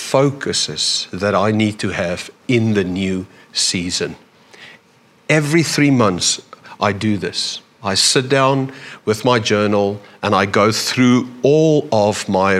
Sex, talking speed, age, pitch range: male, 140 wpm, 50-69, 100-135 Hz